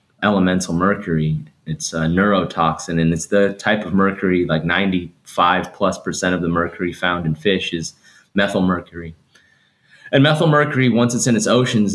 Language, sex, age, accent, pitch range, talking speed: English, male, 30-49, American, 85-105 Hz, 150 wpm